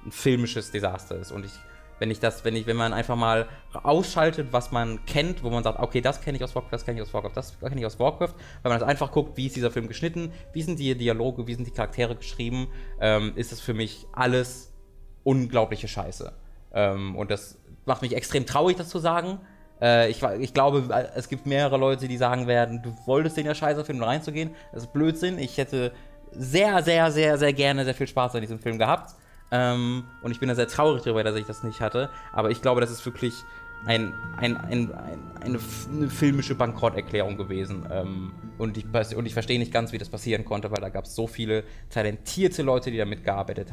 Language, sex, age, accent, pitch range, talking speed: German, male, 20-39, German, 110-145 Hz, 220 wpm